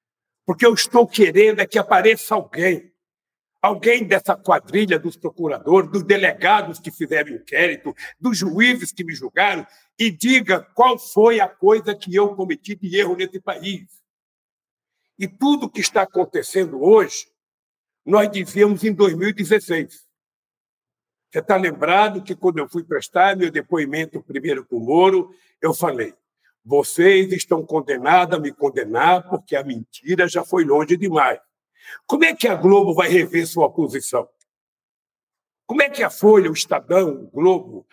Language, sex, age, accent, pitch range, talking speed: Portuguese, male, 60-79, Brazilian, 185-235 Hz, 145 wpm